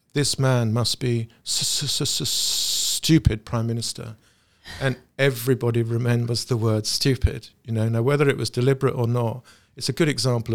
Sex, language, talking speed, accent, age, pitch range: male, English, 165 wpm, British, 50-69, 115-140 Hz